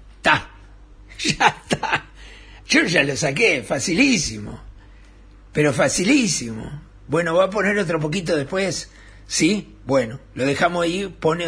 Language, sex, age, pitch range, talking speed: Spanish, male, 50-69, 125-170 Hz, 115 wpm